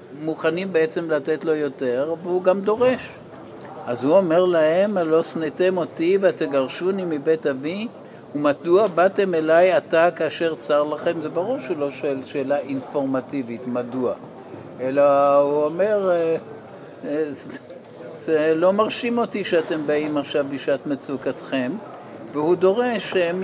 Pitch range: 150-190 Hz